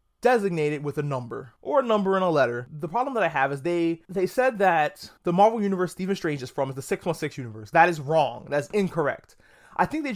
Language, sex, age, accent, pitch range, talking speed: English, male, 20-39, American, 150-215 Hz, 230 wpm